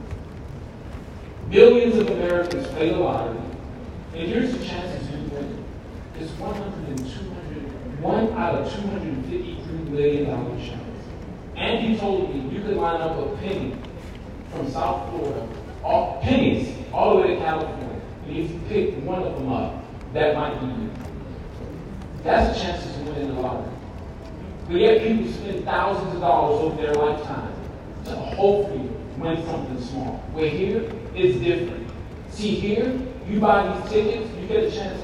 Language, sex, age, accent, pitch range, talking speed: English, male, 40-59, American, 130-210 Hz, 150 wpm